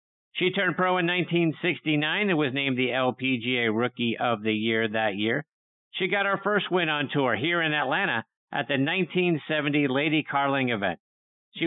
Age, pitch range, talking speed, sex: 50-69, 115-160 Hz, 170 wpm, male